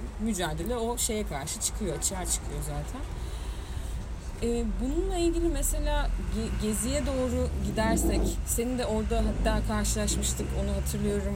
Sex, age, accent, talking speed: female, 30-49, native, 120 wpm